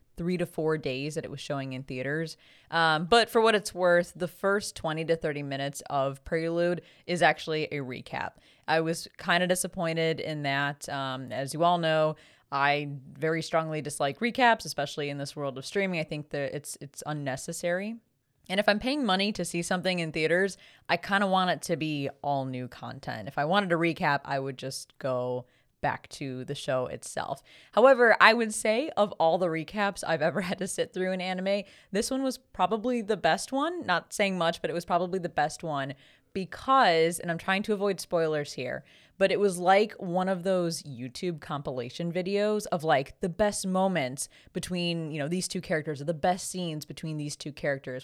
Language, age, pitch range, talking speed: English, 20-39, 140-185 Hz, 200 wpm